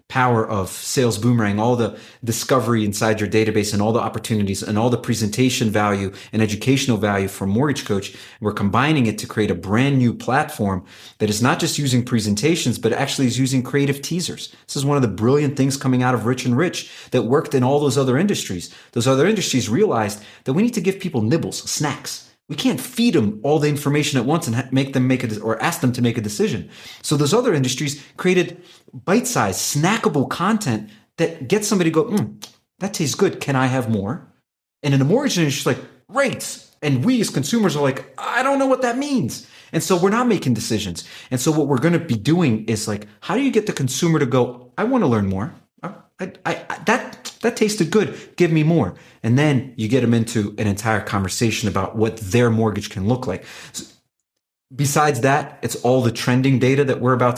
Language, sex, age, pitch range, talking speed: English, male, 30-49, 110-155 Hz, 215 wpm